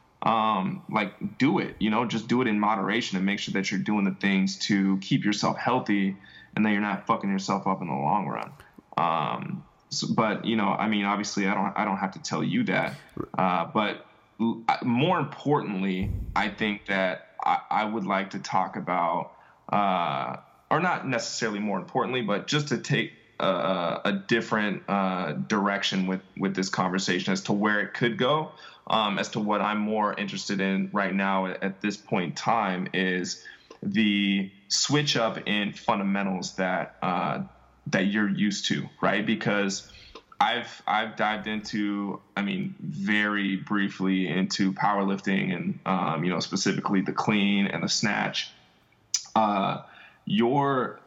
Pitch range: 95-110 Hz